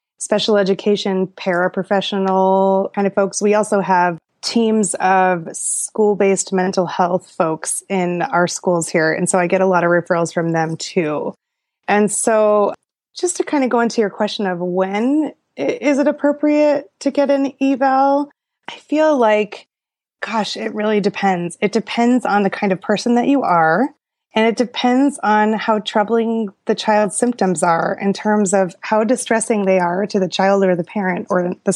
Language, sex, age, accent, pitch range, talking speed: English, female, 20-39, American, 190-240 Hz, 170 wpm